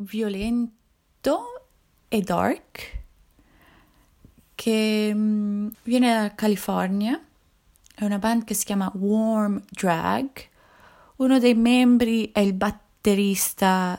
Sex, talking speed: female, 90 wpm